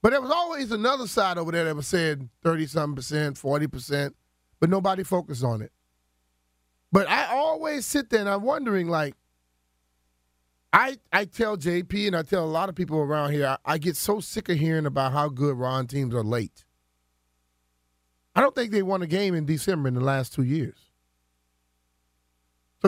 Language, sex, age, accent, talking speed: English, male, 30-49, American, 185 wpm